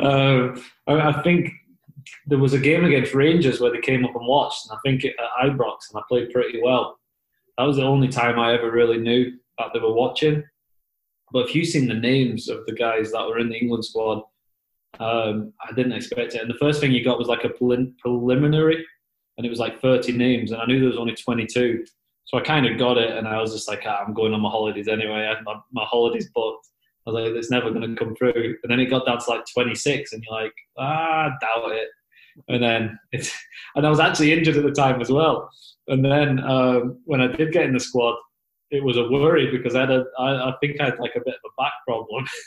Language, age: English, 20-39